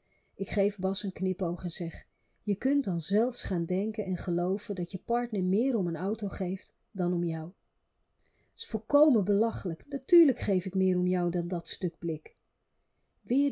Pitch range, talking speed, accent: 175-215 Hz, 180 wpm, Dutch